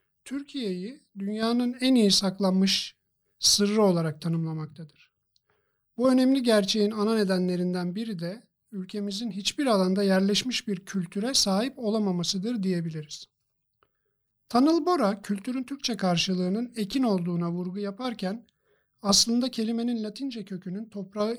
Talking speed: 105 wpm